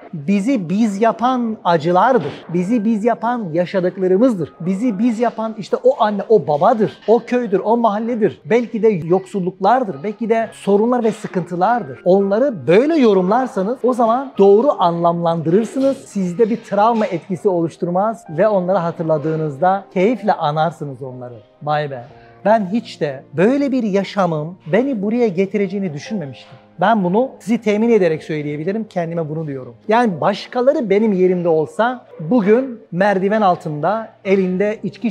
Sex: male